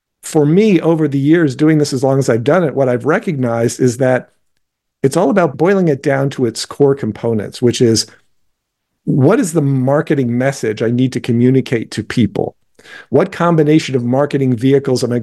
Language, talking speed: English, 190 wpm